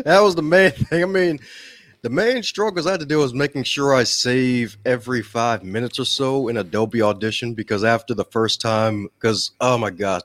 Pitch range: 105-135 Hz